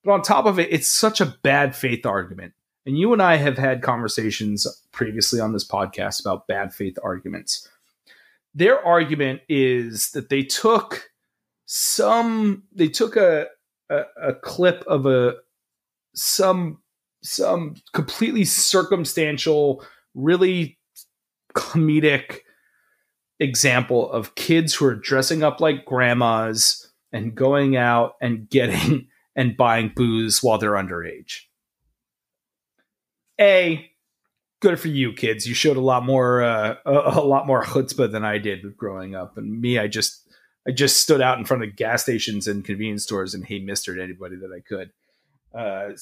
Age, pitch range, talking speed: 30-49, 115-165 Hz, 145 wpm